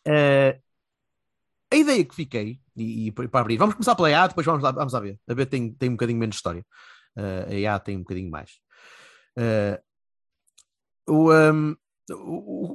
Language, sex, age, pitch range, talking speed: Portuguese, male, 30-49, 110-150 Hz, 150 wpm